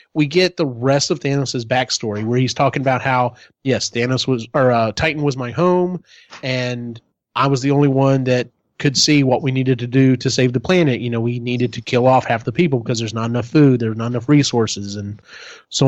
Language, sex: English, male